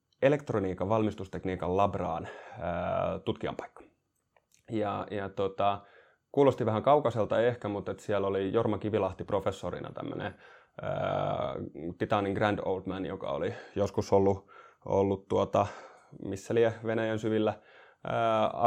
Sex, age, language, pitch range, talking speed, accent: male, 20-39, Finnish, 95-110 Hz, 105 wpm, native